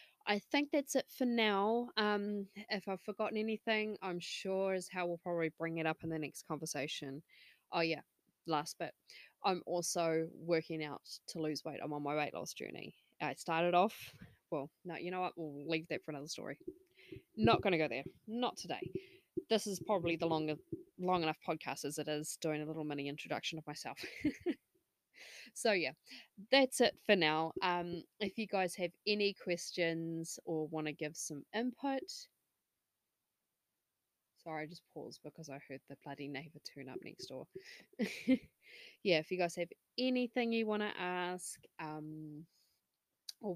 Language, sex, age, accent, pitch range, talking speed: English, female, 20-39, Australian, 160-210 Hz, 170 wpm